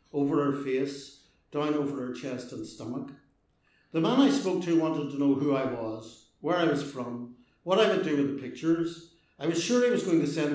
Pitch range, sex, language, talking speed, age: 130-165 Hz, male, English, 220 wpm, 60-79